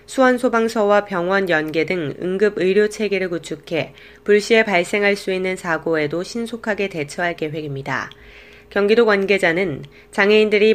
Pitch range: 175-210 Hz